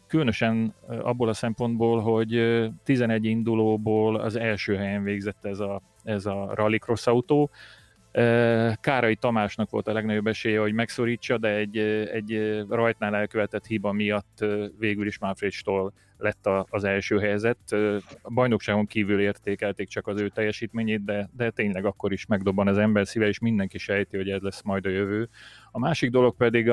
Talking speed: 155 wpm